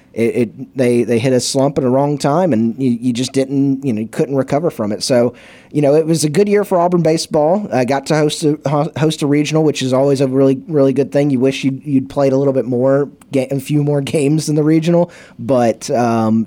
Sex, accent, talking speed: male, American, 250 wpm